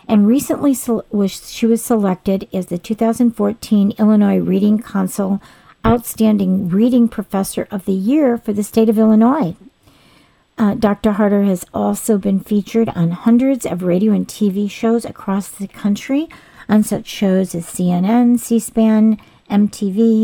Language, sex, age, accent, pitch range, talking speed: English, female, 50-69, American, 190-225 Hz, 135 wpm